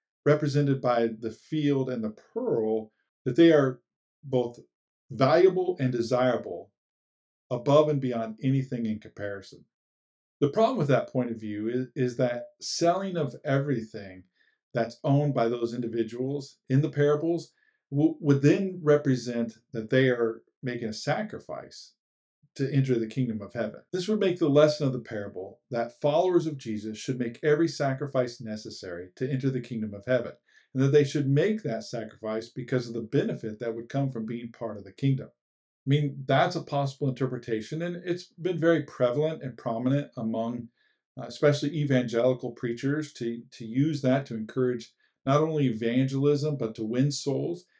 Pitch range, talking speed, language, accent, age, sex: 115-145 Hz, 165 wpm, English, American, 50-69, male